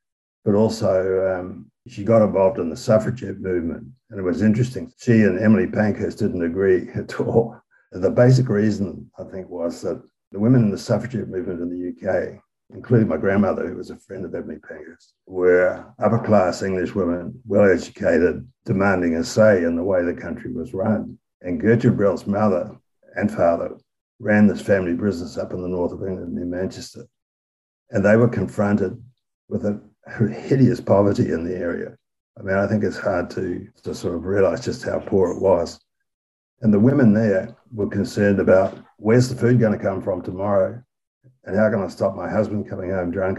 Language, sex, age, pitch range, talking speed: English, male, 60-79, 95-110 Hz, 185 wpm